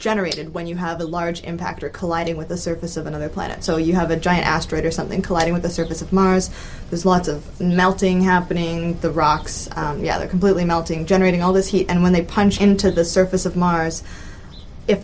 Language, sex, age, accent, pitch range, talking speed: English, female, 20-39, American, 165-190 Hz, 215 wpm